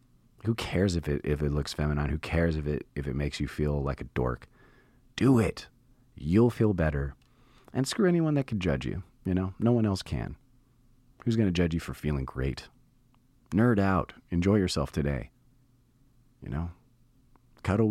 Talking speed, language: 180 wpm, English